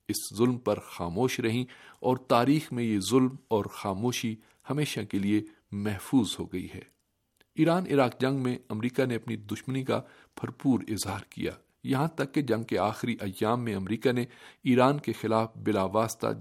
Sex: male